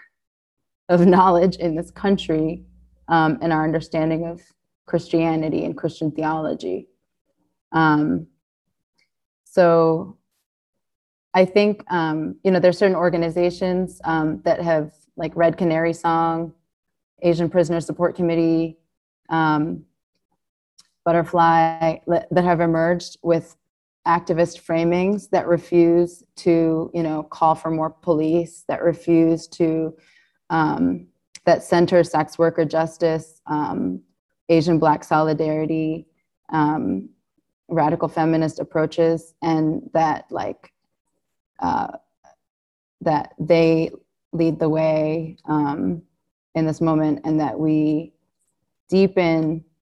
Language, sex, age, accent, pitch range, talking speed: English, female, 20-39, American, 155-170 Hz, 105 wpm